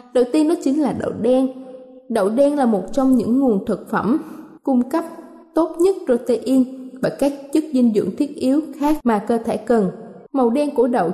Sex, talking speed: female, 200 wpm